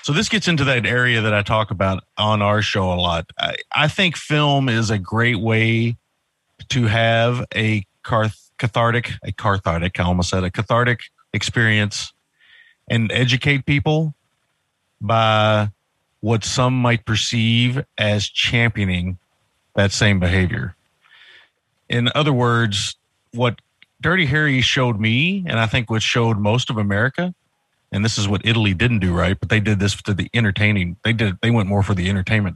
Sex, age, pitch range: male, 40-59, 100-125 Hz